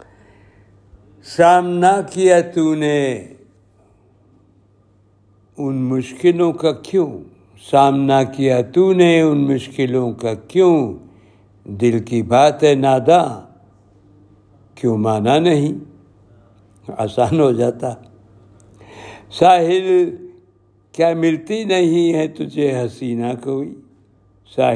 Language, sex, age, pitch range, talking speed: Urdu, male, 60-79, 100-145 Hz, 80 wpm